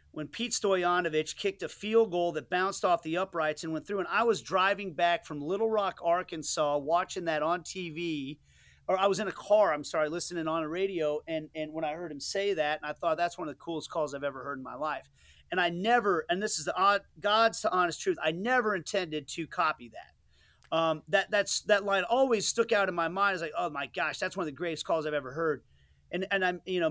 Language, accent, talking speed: English, American, 250 wpm